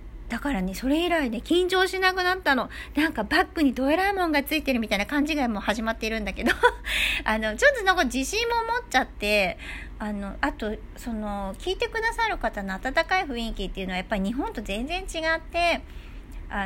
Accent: native